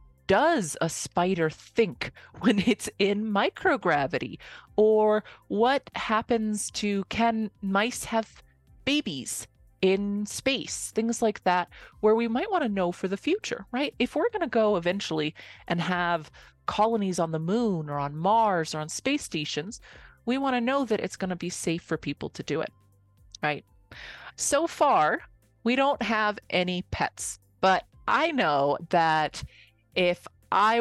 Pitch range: 150-215 Hz